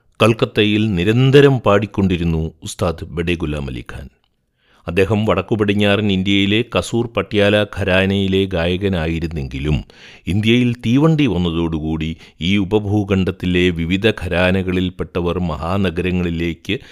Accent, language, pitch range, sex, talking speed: native, Malayalam, 85-105 Hz, male, 80 wpm